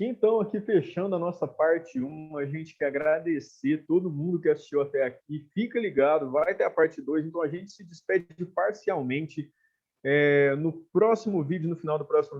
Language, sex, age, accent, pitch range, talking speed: Portuguese, male, 20-39, Brazilian, 145-170 Hz, 185 wpm